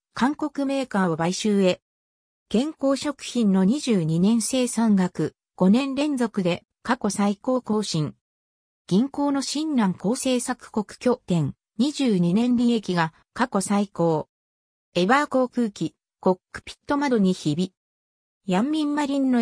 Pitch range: 175-255 Hz